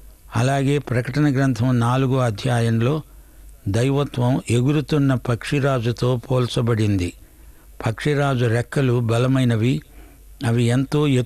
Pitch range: 110-135 Hz